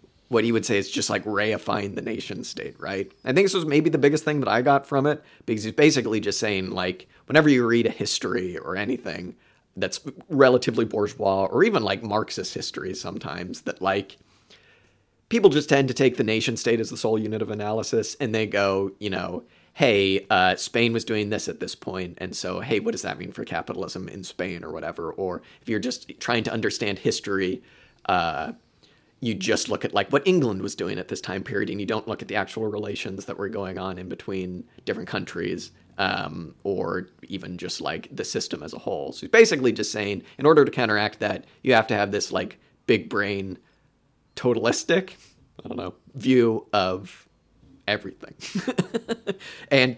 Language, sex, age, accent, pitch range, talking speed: English, male, 30-49, American, 100-130 Hz, 195 wpm